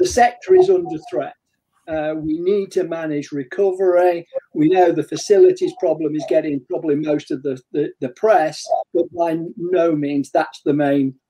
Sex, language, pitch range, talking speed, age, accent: male, English, 150-220 Hz, 170 wpm, 50-69, British